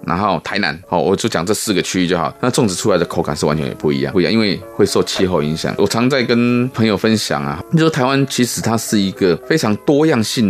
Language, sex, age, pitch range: Chinese, male, 20-39, 85-115 Hz